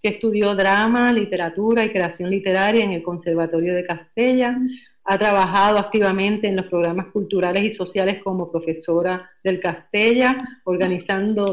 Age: 40-59